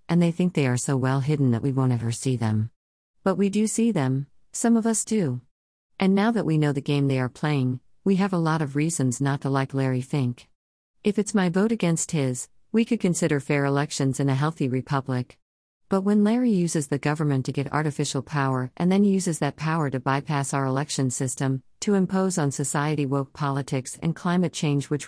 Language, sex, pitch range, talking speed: English, female, 130-160 Hz, 215 wpm